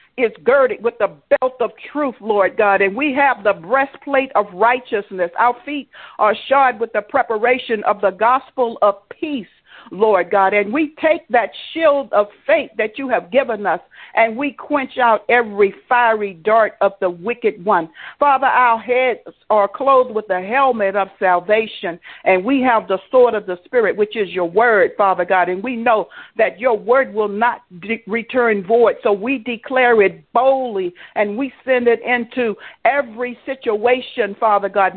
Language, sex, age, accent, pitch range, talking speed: English, female, 60-79, American, 200-255 Hz, 175 wpm